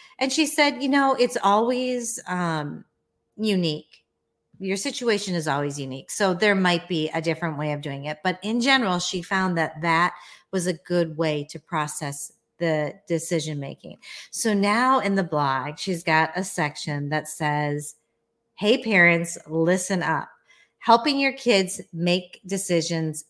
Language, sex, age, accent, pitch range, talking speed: English, female, 40-59, American, 160-210 Hz, 155 wpm